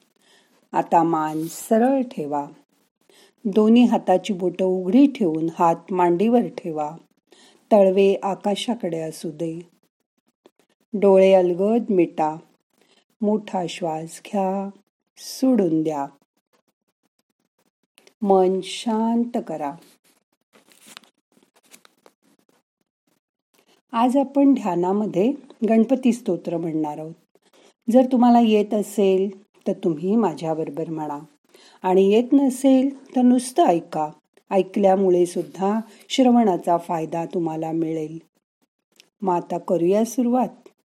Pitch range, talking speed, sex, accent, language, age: 175-230 Hz, 85 wpm, female, native, Marathi, 40-59